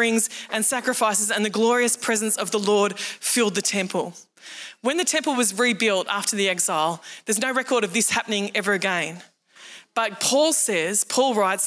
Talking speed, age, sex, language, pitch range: 170 wpm, 20-39, female, English, 225-290 Hz